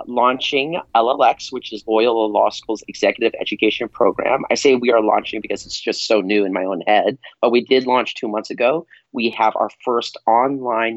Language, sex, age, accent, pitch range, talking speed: English, male, 30-49, American, 105-120 Hz, 195 wpm